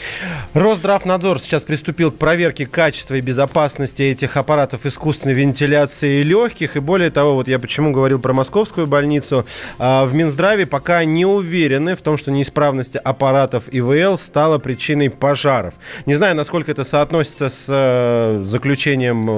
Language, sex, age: Russian, male, 20-39